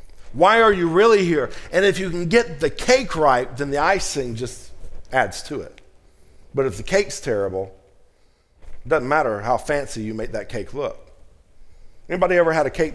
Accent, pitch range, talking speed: American, 135-190 Hz, 185 wpm